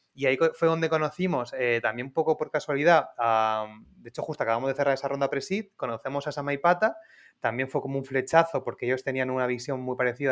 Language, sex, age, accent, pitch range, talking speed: Spanish, male, 20-39, Spanish, 120-140 Hz, 210 wpm